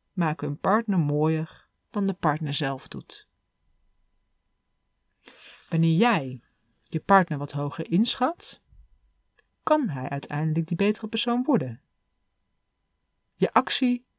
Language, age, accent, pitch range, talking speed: Dutch, 40-59, Dutch, 145-210 Hz, 105 wpm